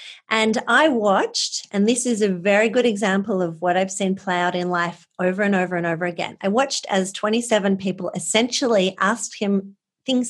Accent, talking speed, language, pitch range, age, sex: Australian, 190 wpm, English, 190-245 Hz, 40-59, female